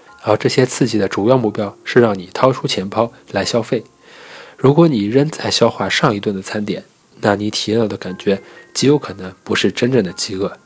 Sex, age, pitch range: male, 20-39, 100-125 Hz